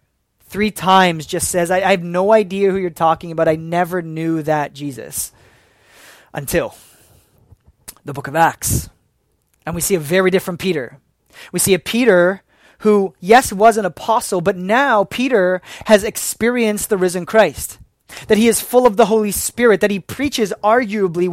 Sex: male